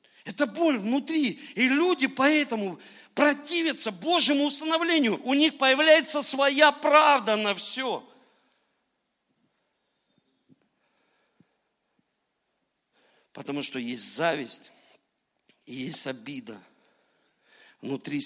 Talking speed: 80 wpm